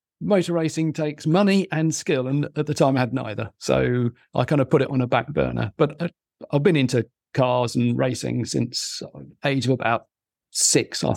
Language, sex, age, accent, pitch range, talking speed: English, male, 50-69, British, 120-155 Hz, 205 wpm